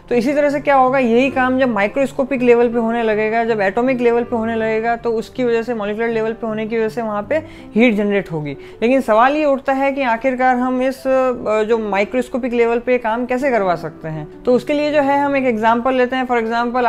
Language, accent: Hindi, native